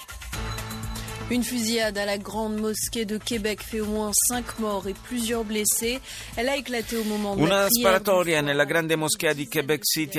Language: Italian